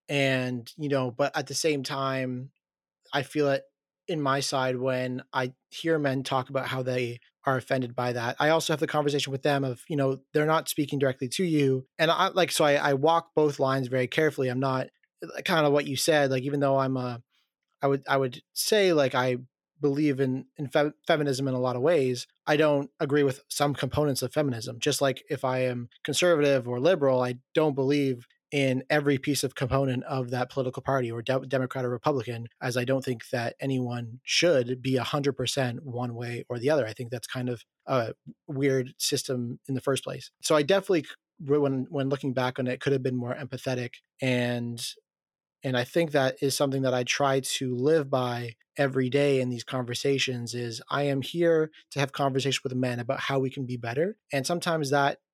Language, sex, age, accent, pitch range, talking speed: English, male, 30-49, American, 125-145 Hz, 205 wpm